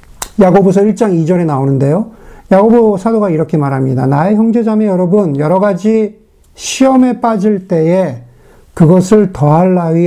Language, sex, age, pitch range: Korean, male, 50-69, 165-235 Hz